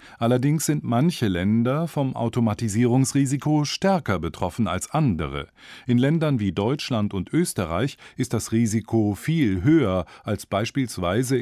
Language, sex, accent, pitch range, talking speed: German, male, German, 95-135 Hz, 120 wpm